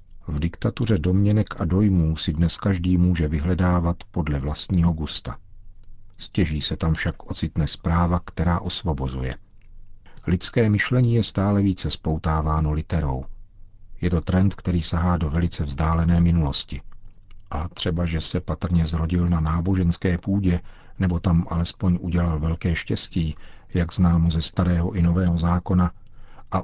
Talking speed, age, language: 135 wpm, 50-69, Czech